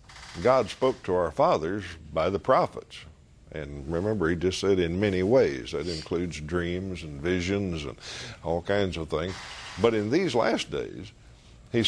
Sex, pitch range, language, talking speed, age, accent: male, 80-105 Hz, English, 160 wpm, 60-79, American